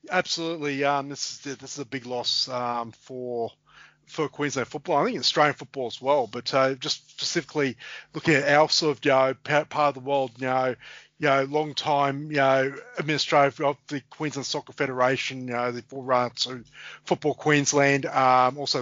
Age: 30-49